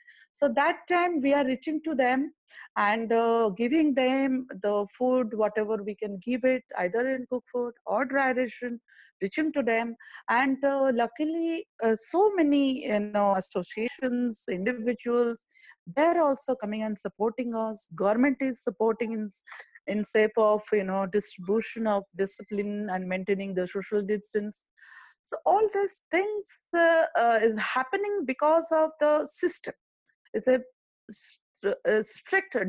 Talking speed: 145 wpm